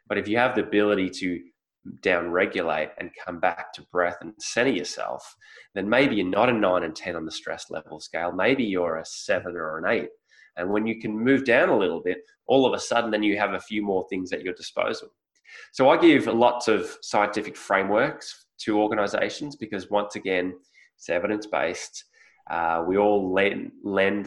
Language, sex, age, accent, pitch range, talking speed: English, male, 20-39, Australian, 95-115 Hz, 195 wpm